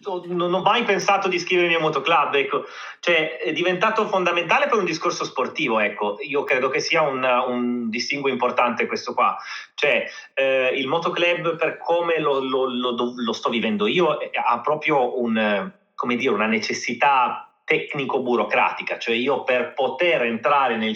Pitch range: 125-185 Hz